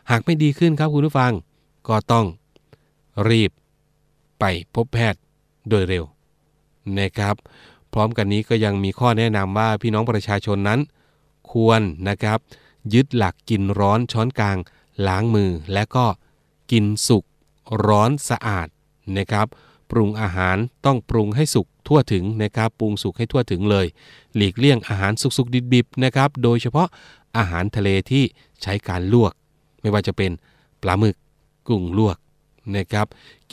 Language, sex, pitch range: Thai, male, 100-130 Hz